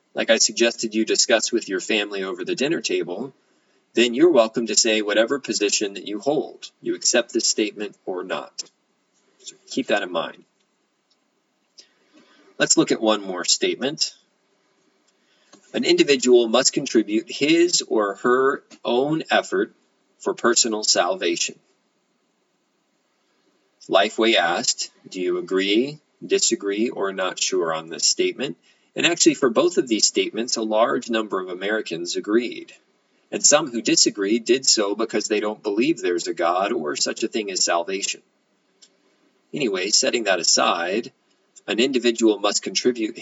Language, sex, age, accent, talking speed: English, male, 40-59, American, 145 wpm